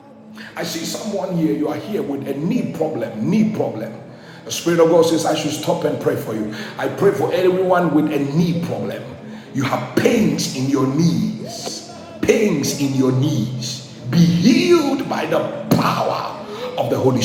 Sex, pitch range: male, 150-215 Hz